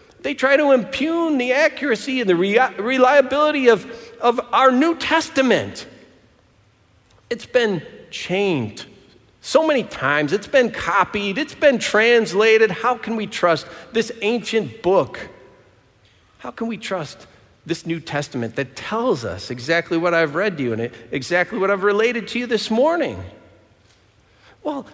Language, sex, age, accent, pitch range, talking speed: English, male, 40-59, American, 140-230 Hz, 140 wpm